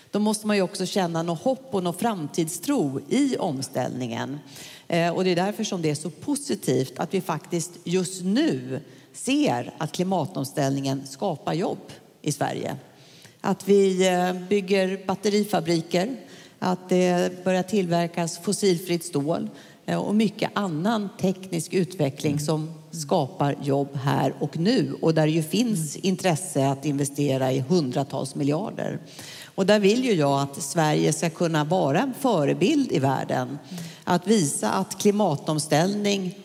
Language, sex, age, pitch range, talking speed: English, female, 50-69, 145-190 Hz, 140 wpm